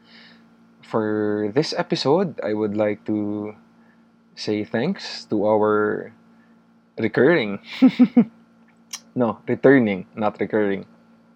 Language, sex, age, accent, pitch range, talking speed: Filipino, male, 20-39, native, 105-160 Hz, 85 wpm